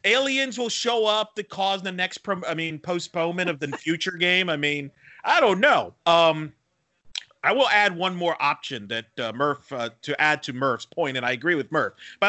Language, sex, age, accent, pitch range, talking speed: English, male, 40-59, American, 145-180 Hz, 210 wpm